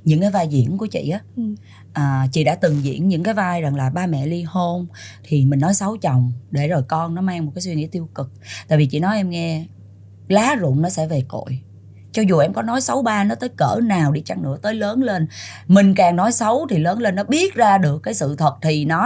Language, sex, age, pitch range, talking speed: Vietnamese, female, 20-39, 135-200 Hz, 255 wpm